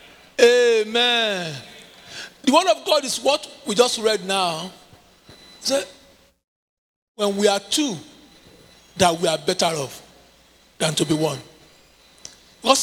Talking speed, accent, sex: 115 wpm, Nigerian, male